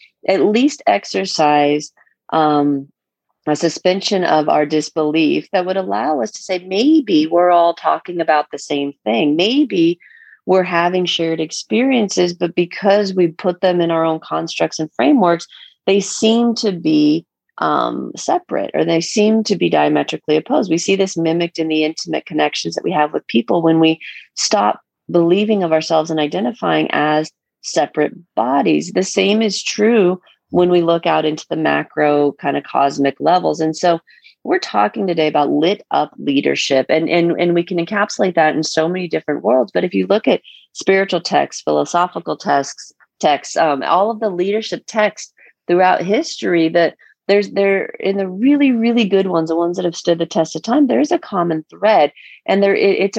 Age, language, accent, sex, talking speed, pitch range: 30-49, English, American, female, 175 wpm, 155-200 Hz